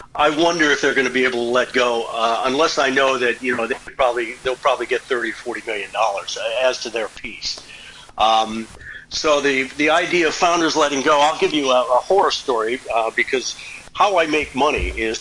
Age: 50-69